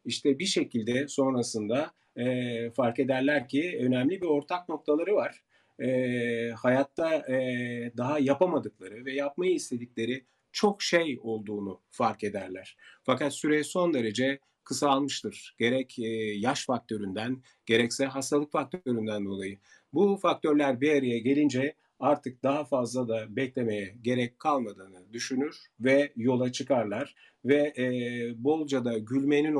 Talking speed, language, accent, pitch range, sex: 115 wpm, Turkish, native, 115-145 Hz, male